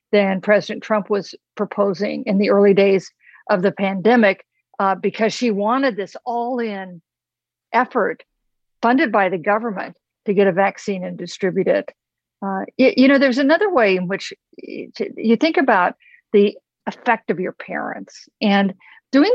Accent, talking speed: American, 150 wpm